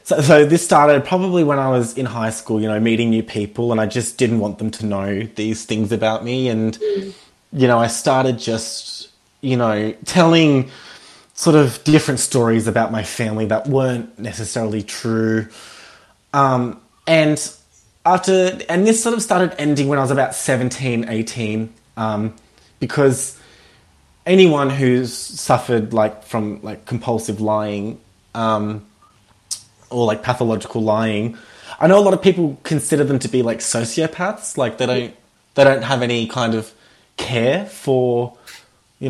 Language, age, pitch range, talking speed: English, 20-39, 110-135 Hz, 155 wpm